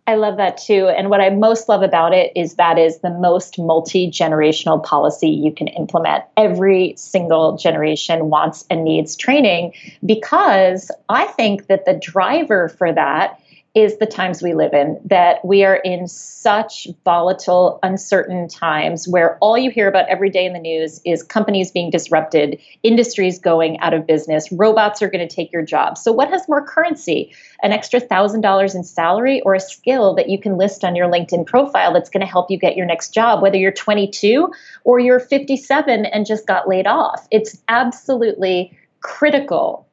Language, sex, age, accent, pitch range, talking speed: English, female, 30-49, American, 175-220 Hz, 180 wpm